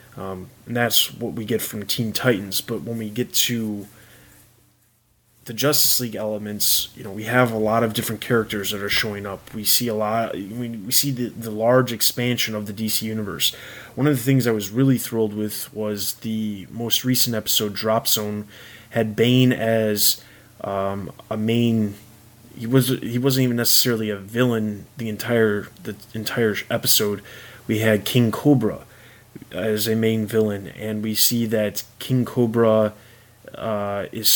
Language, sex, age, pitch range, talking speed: English, male, 20-39, 105-120 Hz, 170 wpm